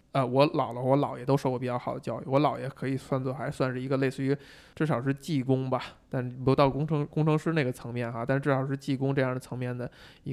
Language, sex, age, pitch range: Chinese, male, 20-39, 120-140 Hz